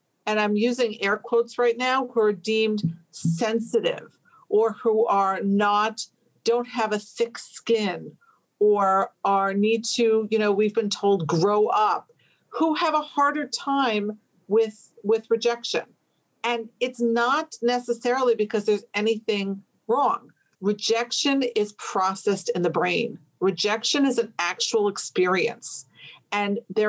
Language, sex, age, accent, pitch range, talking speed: English, female, 50-69, American, 205-245 Hz, 135 wpm